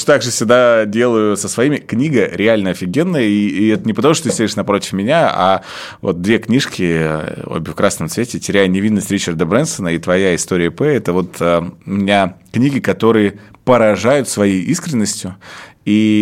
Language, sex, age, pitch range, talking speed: Russian, male, 20-39, 90-110 Hz, 165 wpm